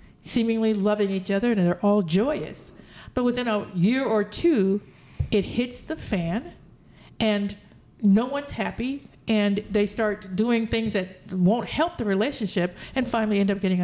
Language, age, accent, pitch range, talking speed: English, 50-69, American, 190-240 Hz, 160 wpm